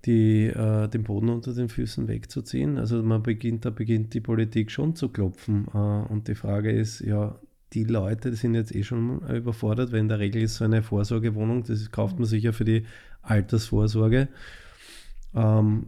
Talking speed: 185 wpm